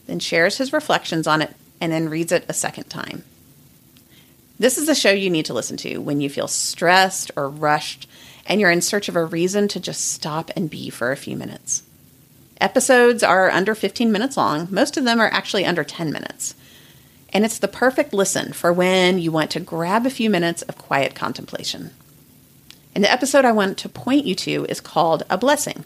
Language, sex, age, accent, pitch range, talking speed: English, female, 40-59, American, 165-250 Hz, 205 wpm